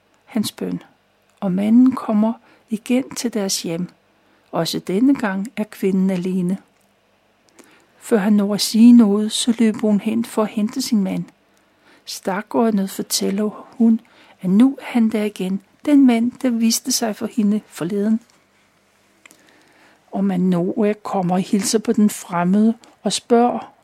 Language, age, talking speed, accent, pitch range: Danish, 60-79, 150 wpm, native, 195-235 Hz